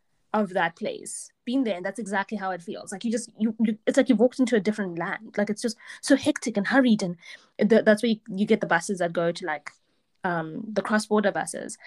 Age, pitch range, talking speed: 20-39, 190-235 Hz, 250 wpm